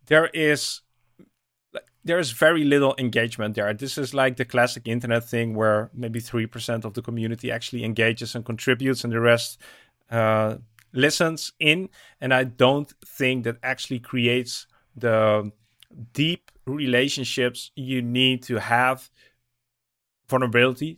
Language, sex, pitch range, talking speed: English, male, 115-140 Hz, 130 wpm